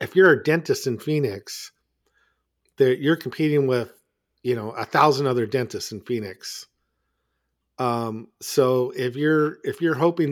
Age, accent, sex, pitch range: 50-69, American, male, 115-140 Hz